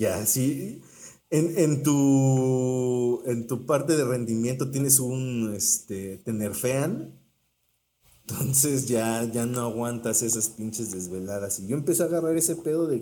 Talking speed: 145 wpm